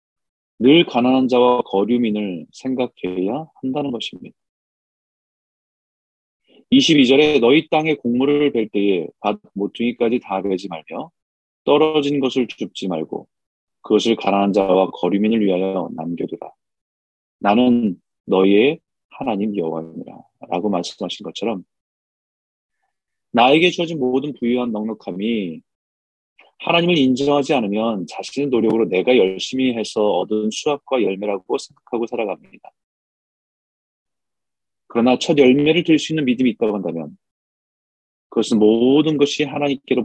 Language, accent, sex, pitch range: Korean, native, male, 100-145 Hz